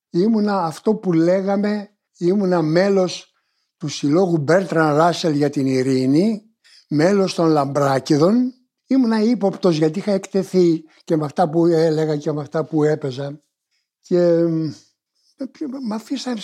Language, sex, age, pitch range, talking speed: Greek, male, 60-79, 155-240 Hz, 125 wpm